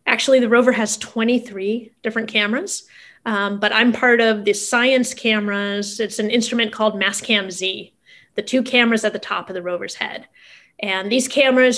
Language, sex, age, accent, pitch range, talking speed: English, female, 30-49, American, 210-245 Hz, 170 wpm